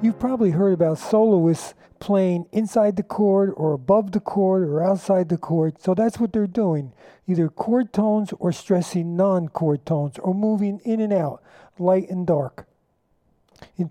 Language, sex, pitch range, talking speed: English, male, 165-210 Hz, 165 wpm